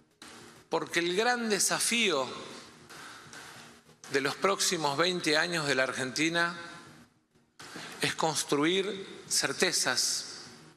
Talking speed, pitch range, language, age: 85 wpm, 150-195 Hz, Spanish, 40-59